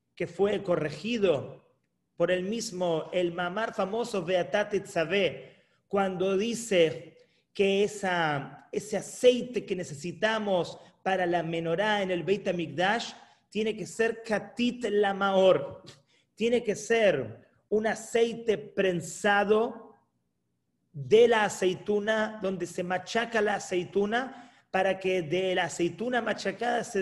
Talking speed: 115 wpm